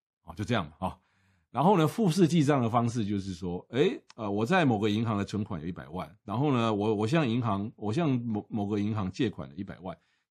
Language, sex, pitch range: Chinese, male, 95-150 Hz